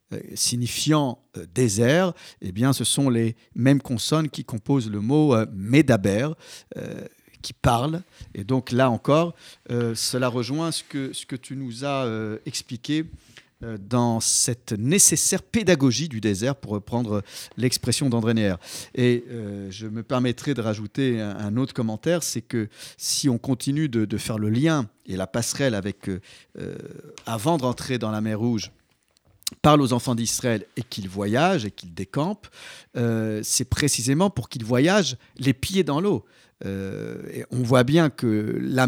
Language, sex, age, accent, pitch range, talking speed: French, male, 50-69, French, 115-160 Hz, 165 wpm